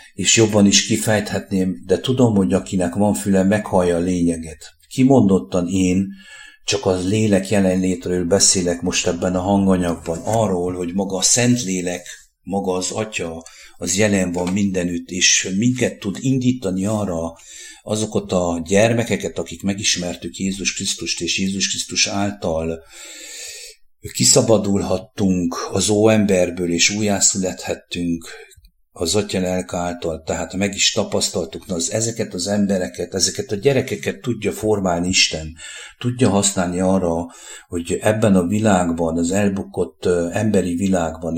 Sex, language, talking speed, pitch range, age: male, English, 125 wpm, 90-105 Hz, 60-79